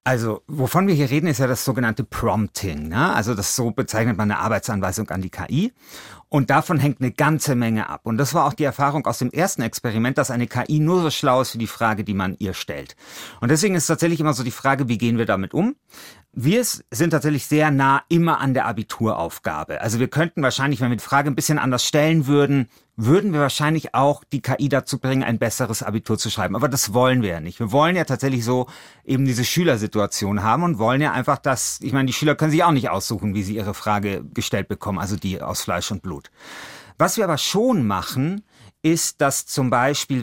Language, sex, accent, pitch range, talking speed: German, male, German, 110-145 Hz, 220 wpm